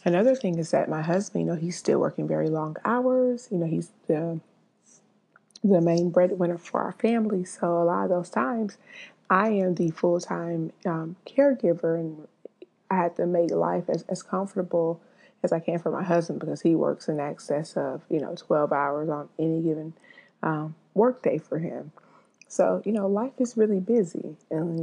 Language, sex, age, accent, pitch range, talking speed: English, female, 30-49, American, 160-190 Hz, 190 wpm